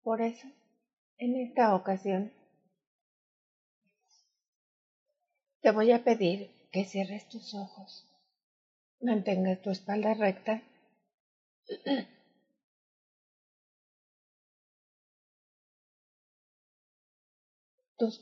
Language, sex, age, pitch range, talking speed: Spanish, female, 30-49, 185-235 Hz, 60 wpm